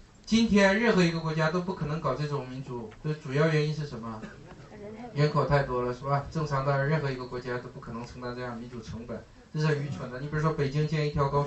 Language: Chinese